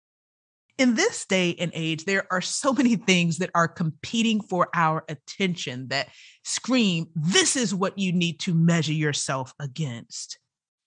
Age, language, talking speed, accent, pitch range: 30-49, English, 150 wpm, American, 155-195 Hz